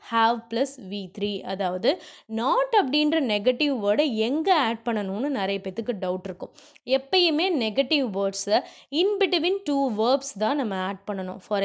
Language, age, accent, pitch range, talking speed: Tamil, 20-39, native, 195-270 Hz, 145 wpm